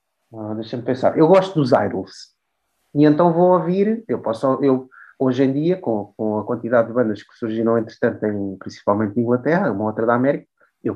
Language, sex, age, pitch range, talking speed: Portuguese, male, 30-49, 120-160 Hz, 195 wpm